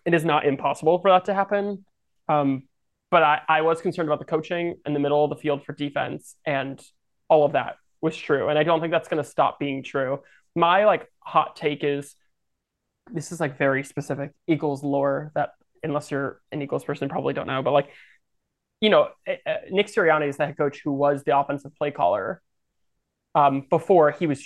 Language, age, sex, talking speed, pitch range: English, 20-39, male, 205 wpm, 145-170 Hz